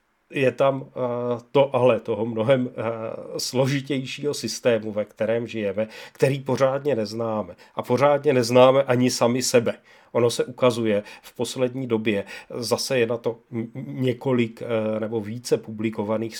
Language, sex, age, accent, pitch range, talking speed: Czech, male, 40-59, native, 110-130 Hz, 125 wpm